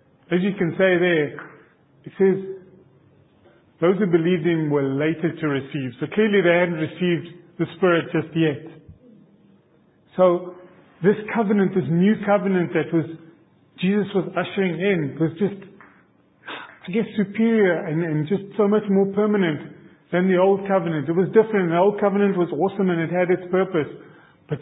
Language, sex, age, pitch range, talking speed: English, male, 40-59, 165-195 Hz, 160 wpm